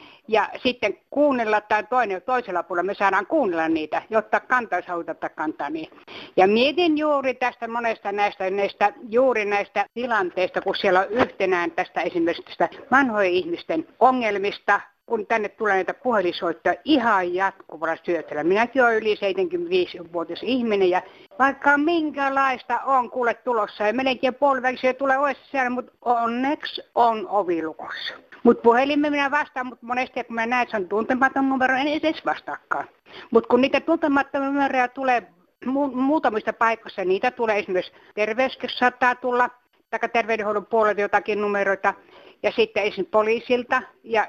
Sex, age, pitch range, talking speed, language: female, 60-79, 200-260 Hz, 140 wpm, Finnish